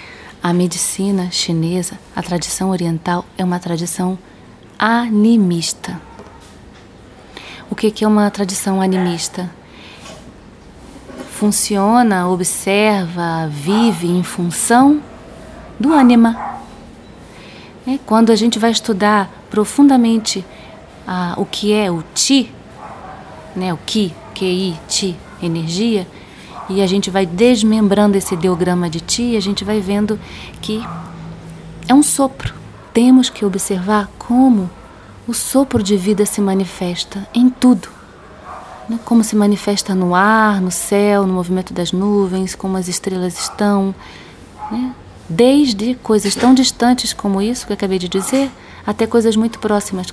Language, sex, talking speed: Portuguese, female, 120 wpm